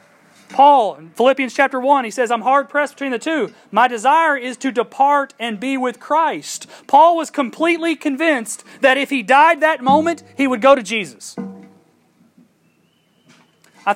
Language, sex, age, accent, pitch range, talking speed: English, male, 30-49, American, 210-285 Hz, 165 wpm